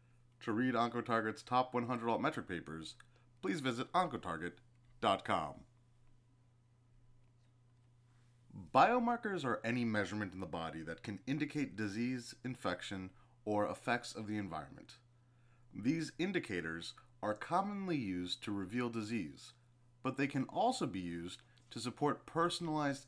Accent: American